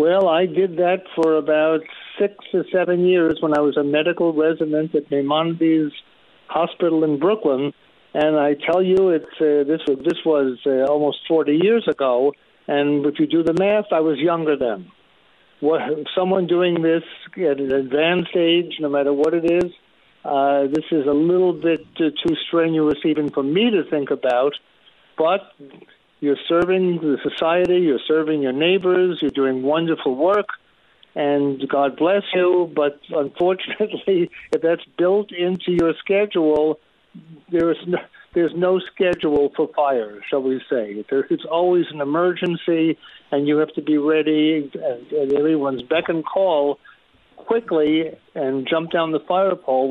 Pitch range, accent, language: 145-175 Hz, American, English